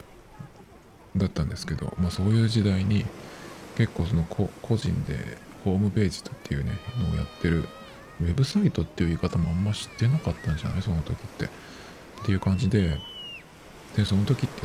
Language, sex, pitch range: Japanese, male, 85-105 Hz